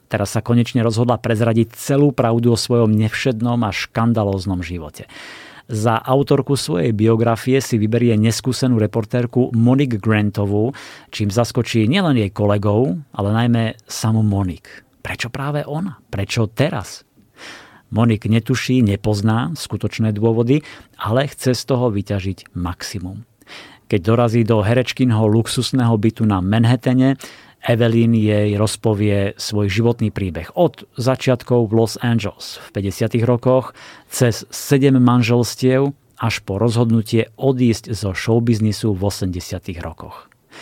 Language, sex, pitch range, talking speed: Slovak, male, 105-125 Hz, 120 wpm